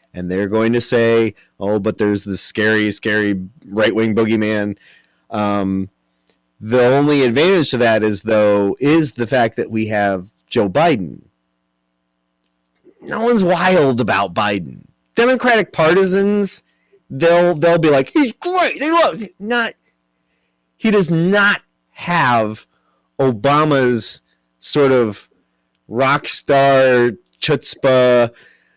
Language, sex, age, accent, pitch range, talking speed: English, male, 30-49, American, 105-140 Hz, 115 wpm